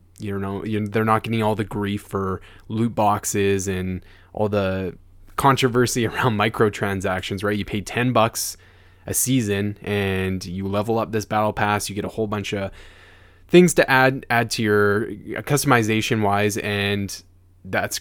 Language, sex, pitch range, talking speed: English, male, 95-115 Hz, 155 wpm